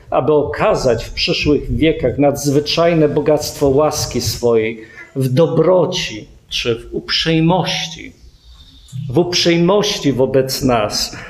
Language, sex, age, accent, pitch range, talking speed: Polish, male, 50-69, native, 140-225 Hz, 95 wpm